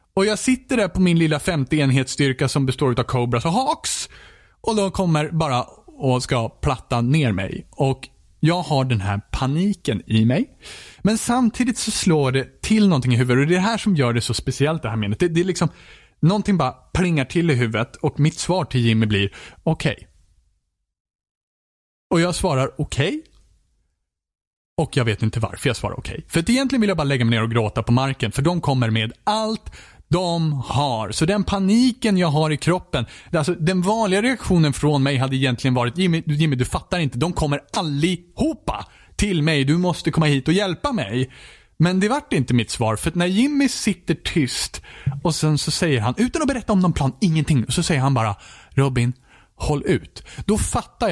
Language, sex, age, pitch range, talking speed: Swedish, male, 30-49, 120-180 Hz, 200 wpm